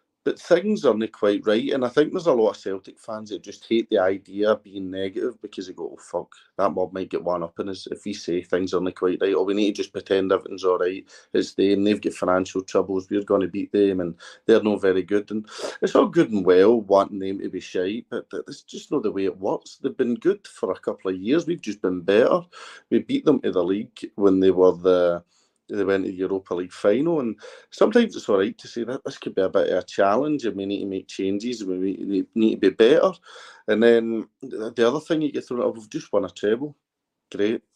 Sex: male